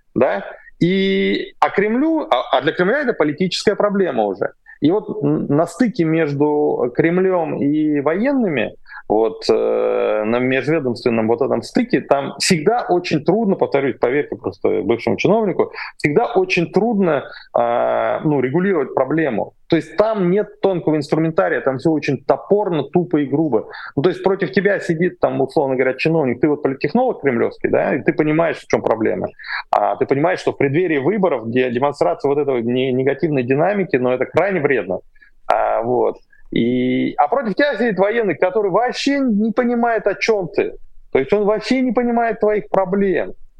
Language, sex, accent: Russian, male, native